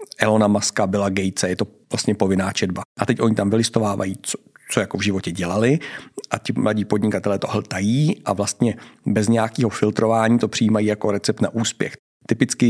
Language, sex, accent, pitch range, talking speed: Czech, male, native, 105-115 Hz, 180 wpm